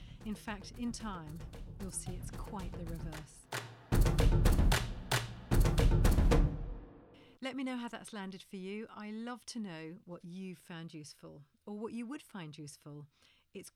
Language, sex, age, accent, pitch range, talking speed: English, female, 40-59, British, 160-215 Hz, 145 wpm